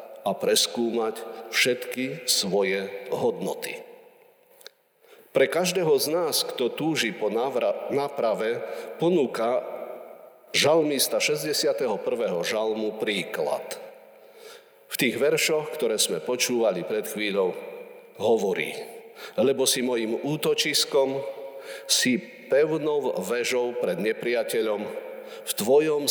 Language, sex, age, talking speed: Slovak, male, 50-69, 85 wpm